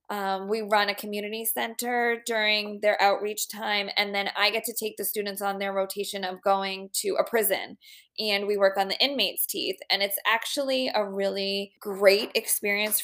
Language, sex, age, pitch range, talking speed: English, female, 20-39, 195-245 Hz, 185 wpm